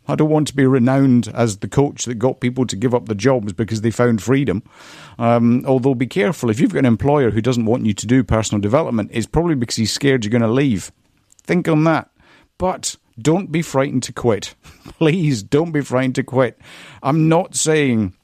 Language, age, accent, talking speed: English, 50-69, British, 215 wpm